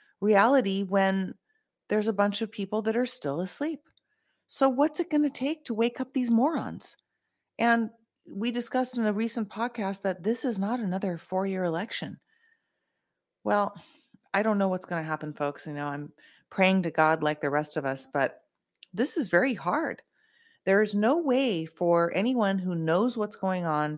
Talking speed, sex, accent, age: 180 wpm, female, American, 40-59